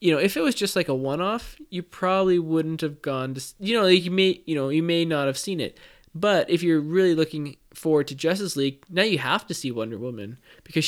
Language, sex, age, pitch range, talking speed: English, male, 20-39, 135-160 Hz, 250 wpm